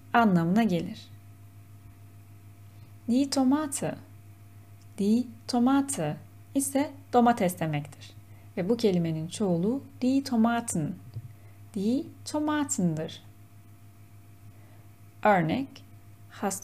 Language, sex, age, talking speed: Turkish, female, 30-49, 70 wpm